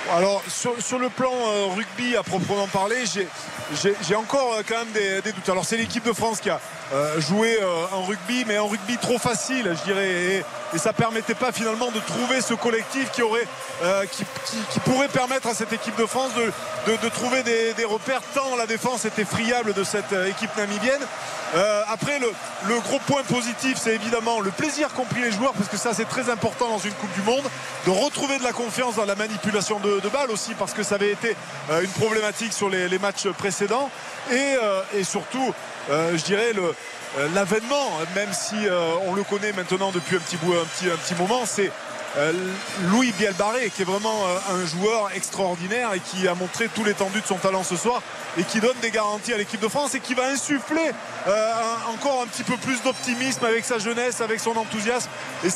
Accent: French